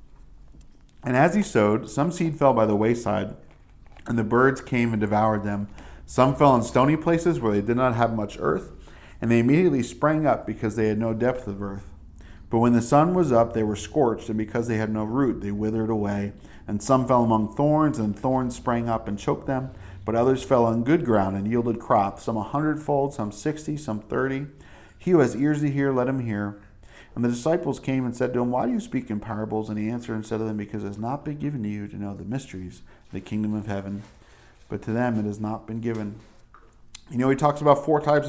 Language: English